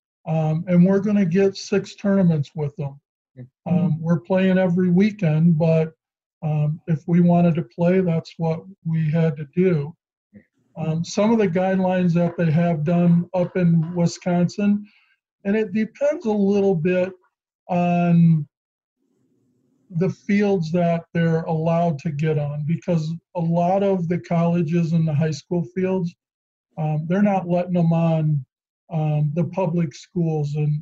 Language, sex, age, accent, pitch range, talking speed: English, male, 50-69, American, 160-180 Hz, 150 wpm